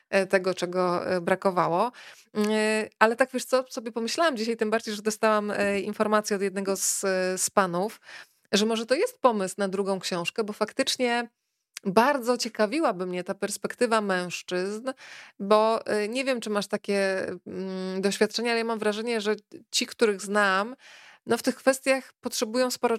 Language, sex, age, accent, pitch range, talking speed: Polish, female, 20-39, native, 190-225 Hz, 145 wpm